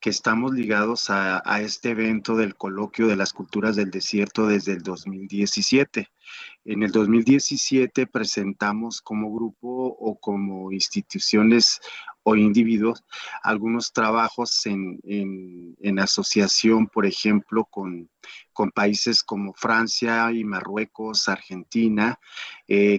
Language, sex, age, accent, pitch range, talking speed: Spanish, male, 40-59, Mexican, 105-120 Hz, 115 wpm